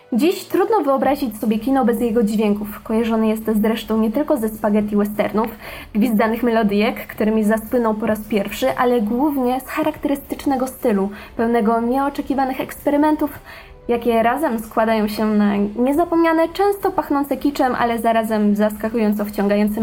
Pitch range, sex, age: 220-275 Hz, female, 20-39